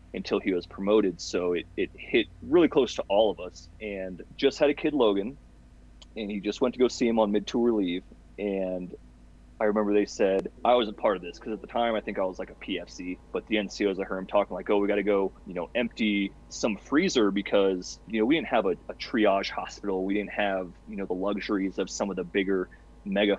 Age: 30-49